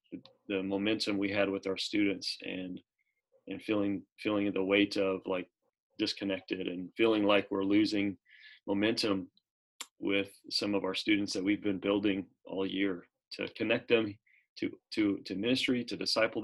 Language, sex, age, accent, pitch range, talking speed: English, male, 30-49, American, 100-115 Hz, 155 wpm